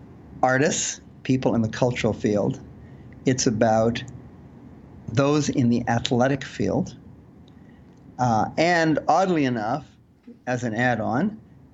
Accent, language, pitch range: American, English, 115-140 Hz